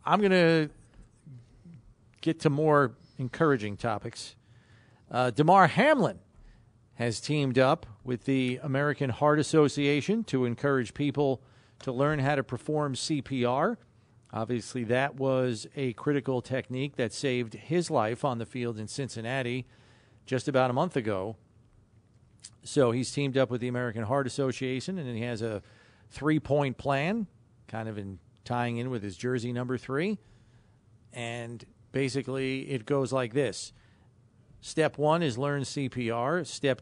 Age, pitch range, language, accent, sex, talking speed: 40-59, 115-135 Hz, English, American, male, 140 wpm